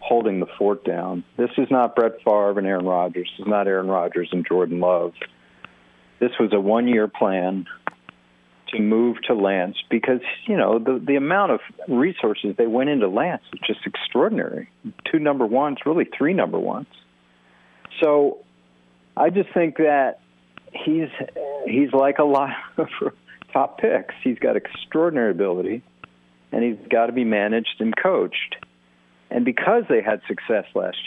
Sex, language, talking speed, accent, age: male, English, 160 wpm, American, 50-69